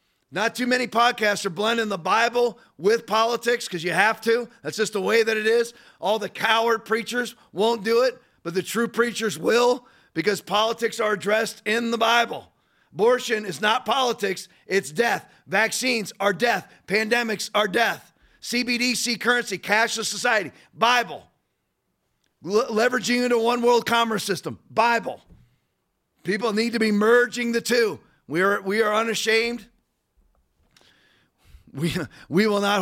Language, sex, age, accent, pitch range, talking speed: English, male, 40-59, American, 195-230 Hz, 150 wpm